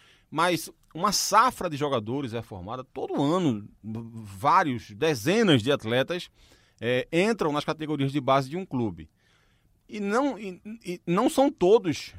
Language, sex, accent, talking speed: Portuguese, male, Brazilian, 150 wpm